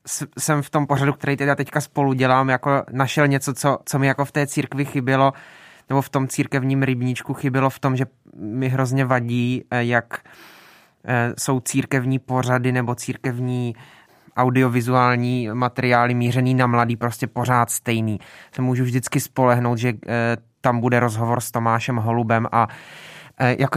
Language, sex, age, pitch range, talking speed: Czech, male, 20-39, 120-135 Hz, 150 wpm